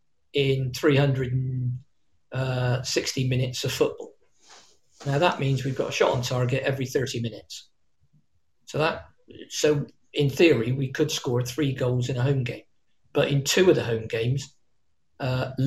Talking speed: 150 wpm